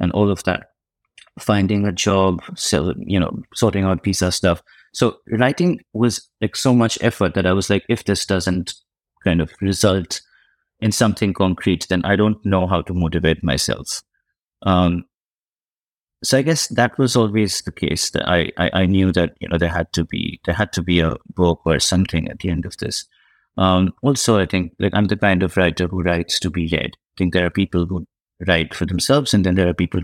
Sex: male